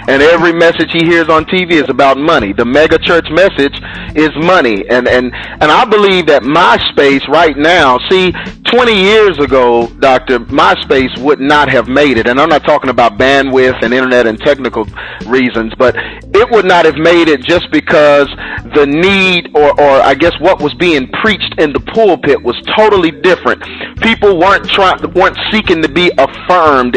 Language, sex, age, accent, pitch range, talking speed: English, male, 40-59, American, 145-195 Hz, 180 wpm